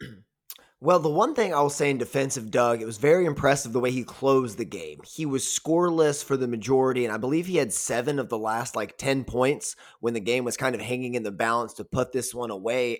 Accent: American